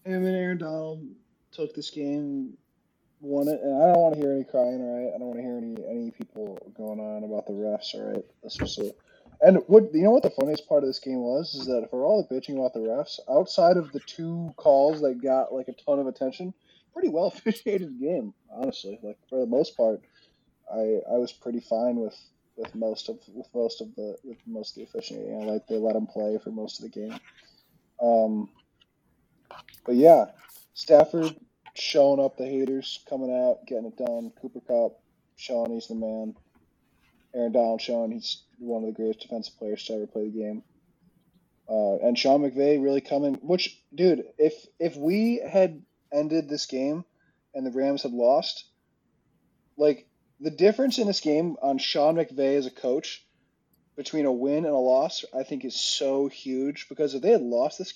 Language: English